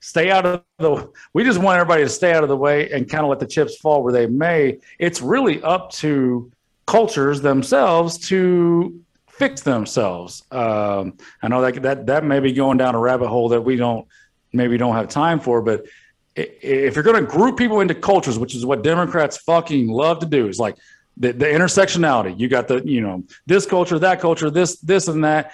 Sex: male